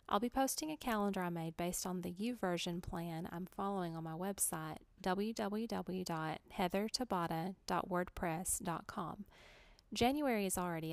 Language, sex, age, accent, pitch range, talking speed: English, female, 30-49, American, 180-225 Hz, 115 wpm